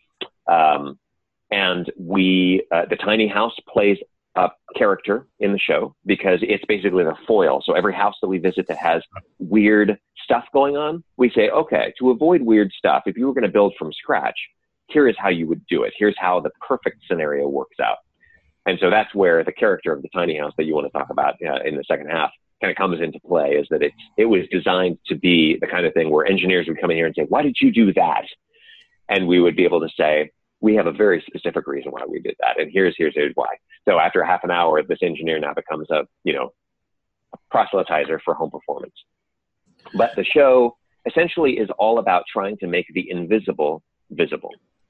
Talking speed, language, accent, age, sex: 215 wpm, English, American, 30-49, male